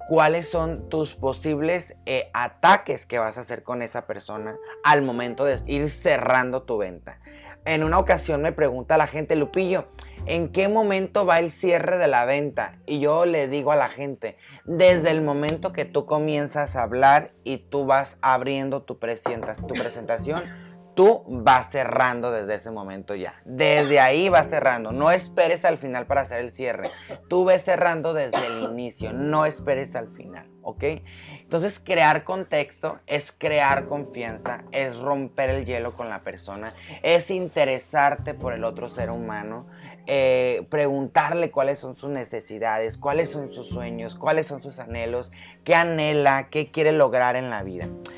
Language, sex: Spanish, male